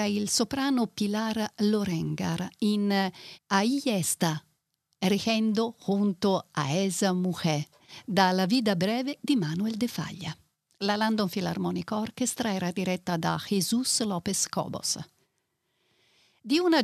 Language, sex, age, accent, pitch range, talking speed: Italian, female, 50-69, native, 175-230 Hz, 105 wpm